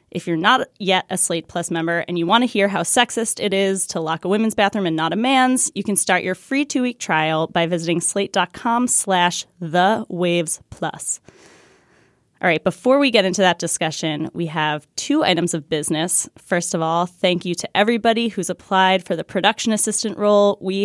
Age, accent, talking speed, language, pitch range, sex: 20-39, American, 195 wpm, English, 170-205 Hz, female